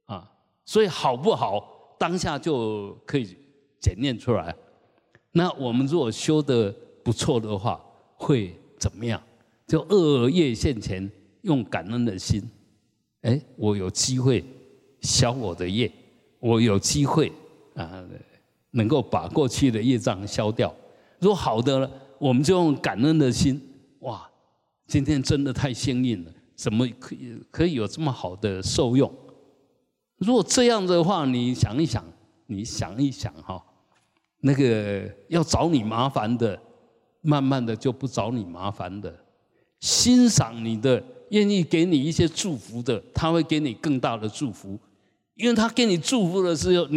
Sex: male